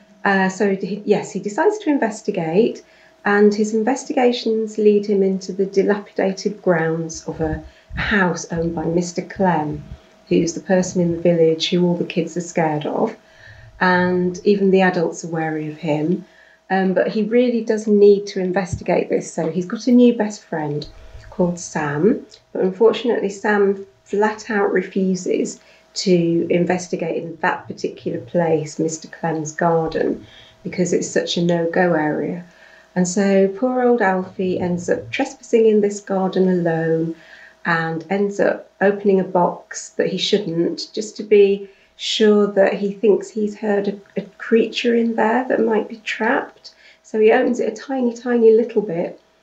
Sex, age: female, 40-59